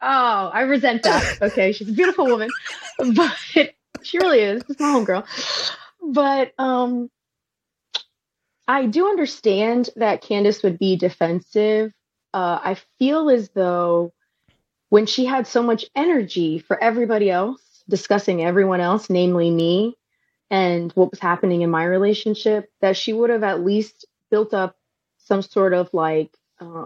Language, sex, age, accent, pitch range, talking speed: English, female, 30-49, American, 190-245 Hz, 145 wpm